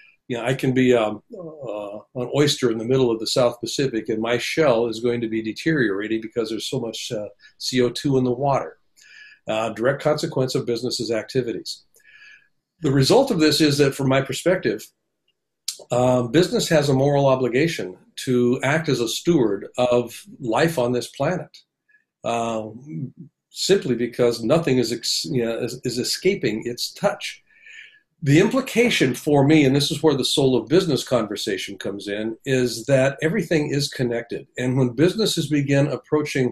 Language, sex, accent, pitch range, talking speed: English, male, American, 120-155 Hz, 170 wpm